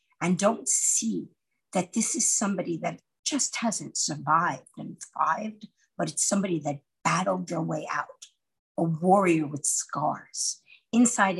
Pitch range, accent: 170-240 Hz, American